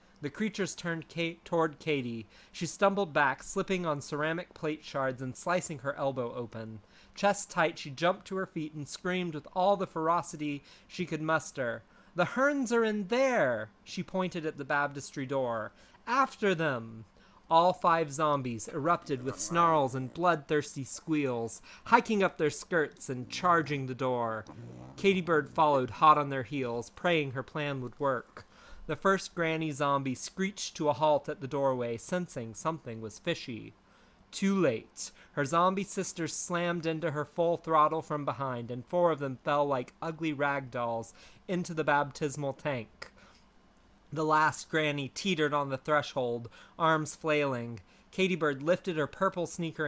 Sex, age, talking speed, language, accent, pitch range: male, 30-49, 160 wpm, English, American, 135-170 Hz